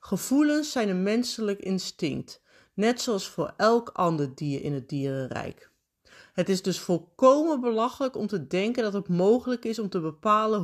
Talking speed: 165 wpm